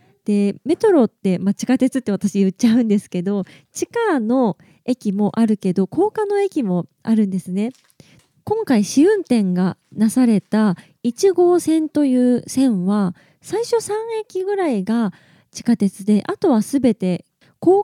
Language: Japanese